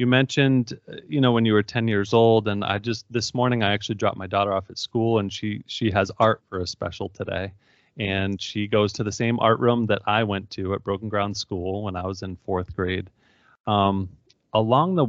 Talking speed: 225 wpm